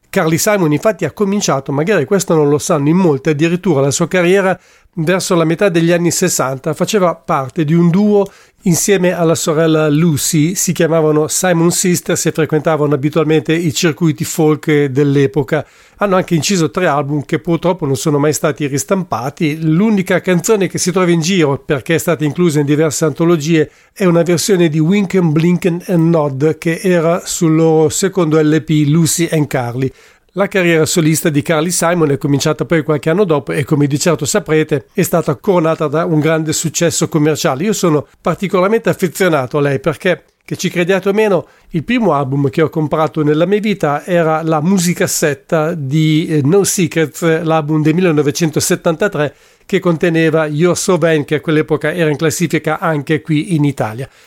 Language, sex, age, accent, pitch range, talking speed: English, male, 40-59, Italian, 155-175 Hz, 170 wpm